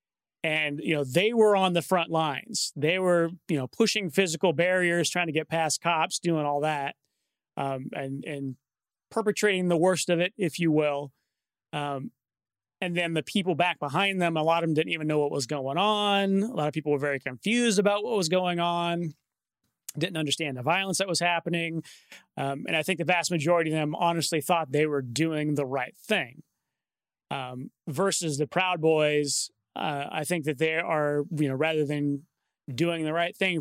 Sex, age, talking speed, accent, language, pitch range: male, 30-49, 195 wpm, American, English, 145-180 Hz